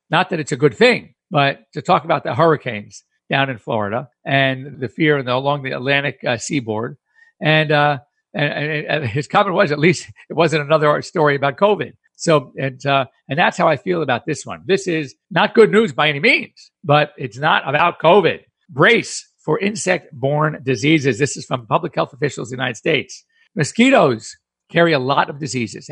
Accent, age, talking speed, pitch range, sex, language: American, 50-69, 190 wpm, 135-175 Hz, male, English